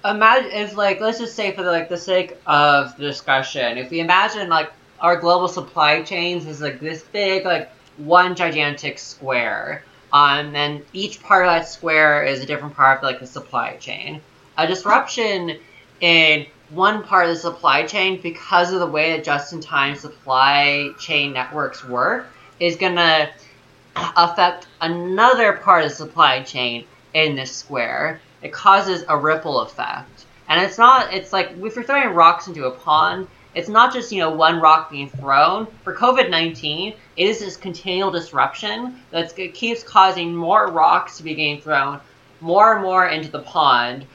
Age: 20-39